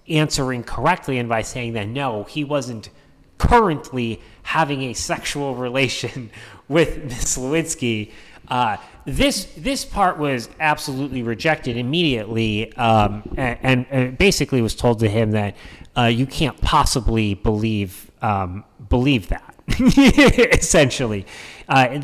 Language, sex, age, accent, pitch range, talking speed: English, male, 30-49, American, 105-140 Hz, 120 wpm